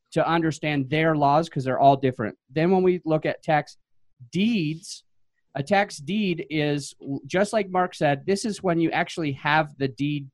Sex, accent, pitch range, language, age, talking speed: male, American, 130-160 Hz, English, 30-49, 180 wpm